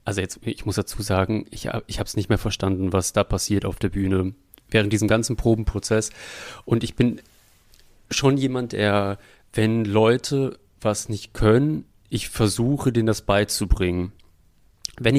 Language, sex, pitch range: German, male, 105-140 Hz